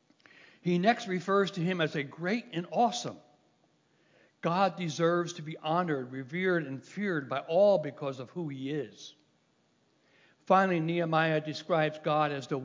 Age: 60-79